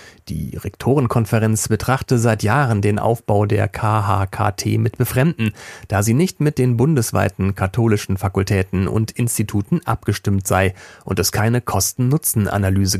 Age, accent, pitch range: 40-59, German, 95-120 Hz